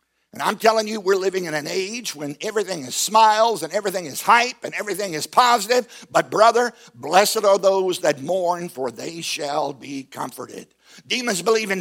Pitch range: 175-235 Hz